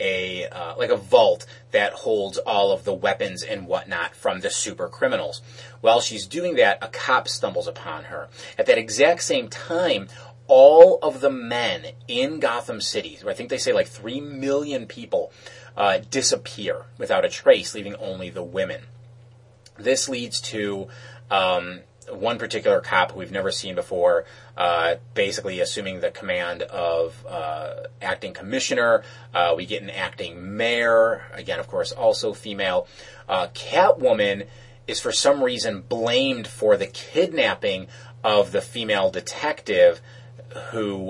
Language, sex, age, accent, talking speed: English, male, 30-49, American, 145 wpm